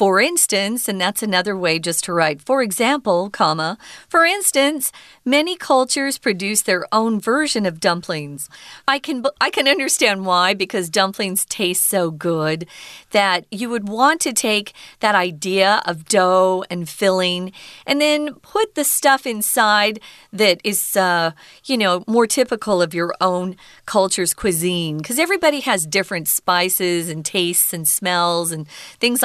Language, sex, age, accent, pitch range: Chinese, female, 40-59, American, 185-260 Hz